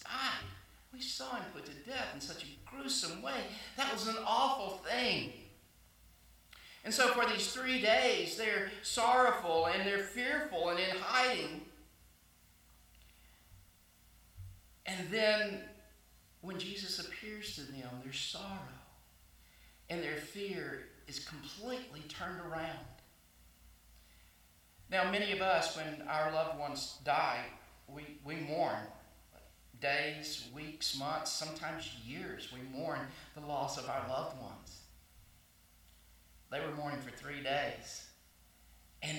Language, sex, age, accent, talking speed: English, male, 50-69, American, 120 wpm